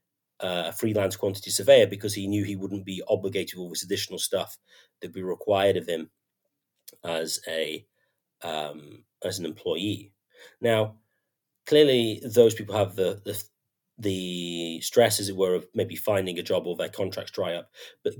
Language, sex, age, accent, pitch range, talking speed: English, male, 30-49, British, 95-115 Hz, 165 wpm